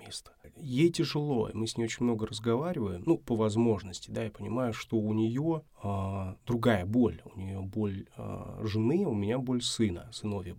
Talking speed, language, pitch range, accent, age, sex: 175 wpm, Russian, 105-120 Hz, native, 20-39, male